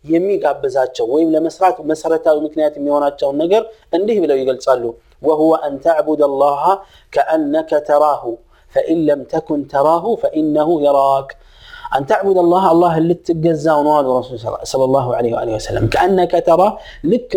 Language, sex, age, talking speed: Amharic, male, 30-49, 130 wpm